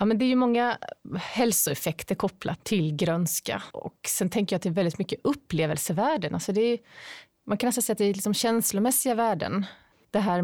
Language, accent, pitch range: English, Swedish, 170-210 Hz